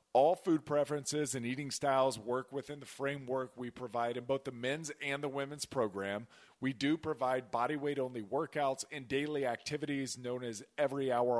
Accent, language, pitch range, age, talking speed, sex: American, English, 120-150 Hz, 40-59, 180 wpm, male